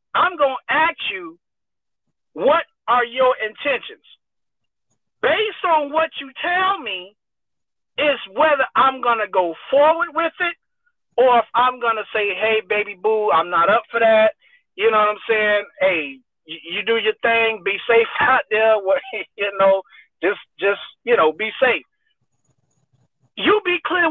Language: English